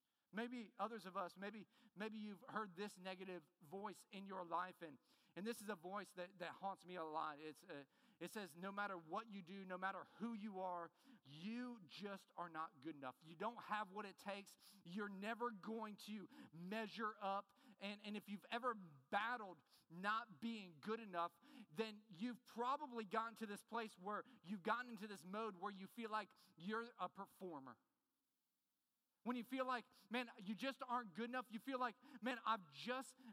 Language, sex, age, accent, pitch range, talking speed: English, male, 40-59, American, 195-235 Hz, 185 wpm